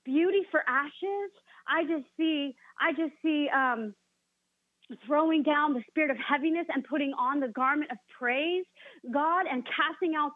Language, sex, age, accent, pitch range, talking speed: English, female, 40-59, American, 250-315 Hz, 155 wpm